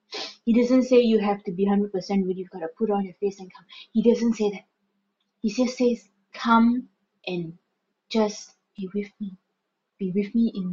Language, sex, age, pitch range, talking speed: English, female, 20-39, 190-230 Hz, 195 wpm